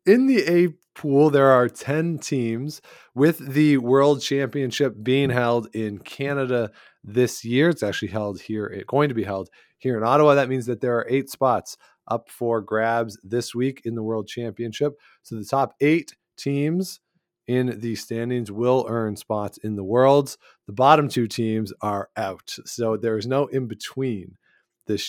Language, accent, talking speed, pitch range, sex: English, American, 175 wpm, 105-135 Hz, male